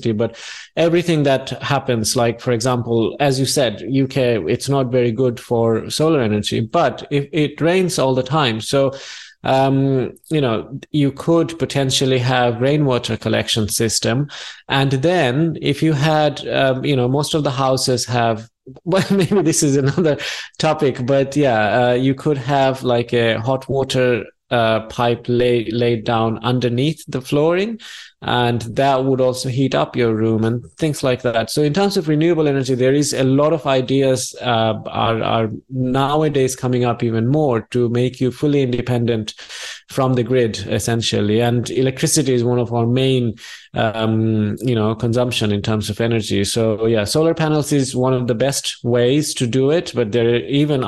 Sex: male